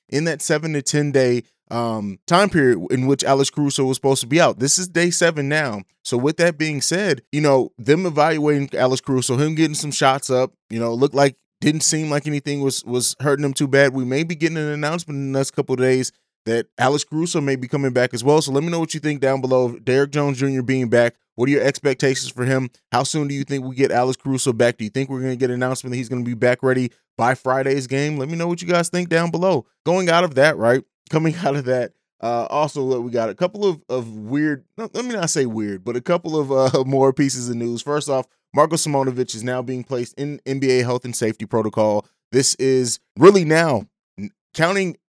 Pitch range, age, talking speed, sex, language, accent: 125-155 Hz, 20-39, 245 wpm, male, English, American